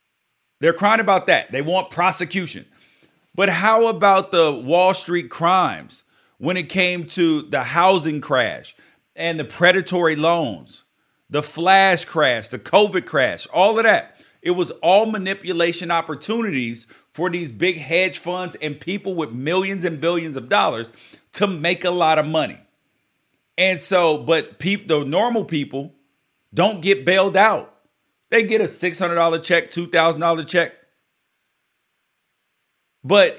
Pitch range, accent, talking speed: 150-190 Hz, American, 140 wpm